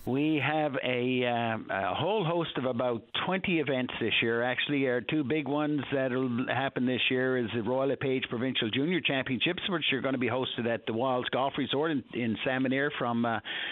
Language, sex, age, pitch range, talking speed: English, male, 60-79, 110-135 Hz, 200 wpm